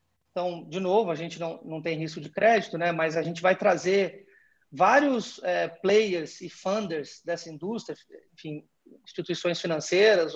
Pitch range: 170-205 Hz